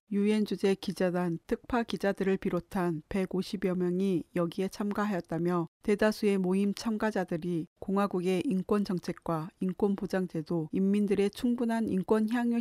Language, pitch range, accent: Korean, 180-210 Hz, native